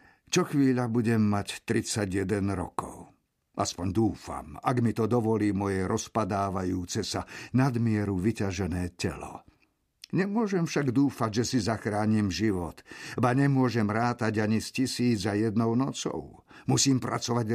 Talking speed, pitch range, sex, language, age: 125 wpm, 100-130 Hz, male, Slovak, 50-69